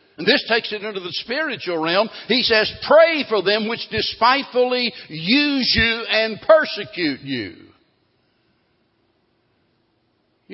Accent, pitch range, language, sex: American, 160-225 Hz, English, male